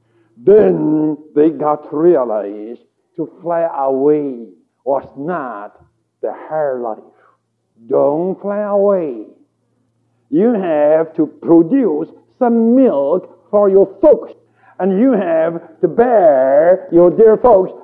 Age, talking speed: 60-79, 110 wpm